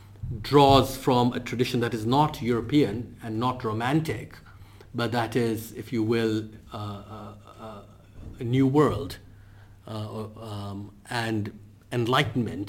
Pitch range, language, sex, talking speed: 100-115 Hz, English, male, 130 wpm